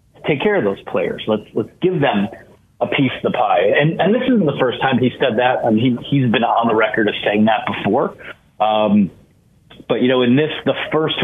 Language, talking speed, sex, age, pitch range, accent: English, 235 wpm, male, 30-49, 115-150 Hz, American